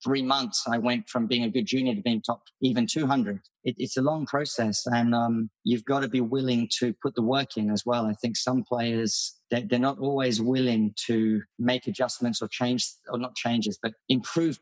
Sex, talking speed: male, 210 wpm